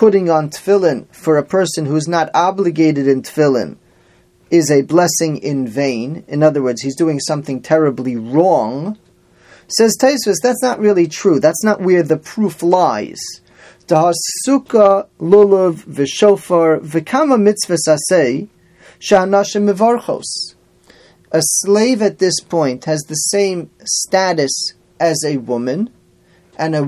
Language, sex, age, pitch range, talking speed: English, male, 30-49, 150-190 Hz, 115 wpm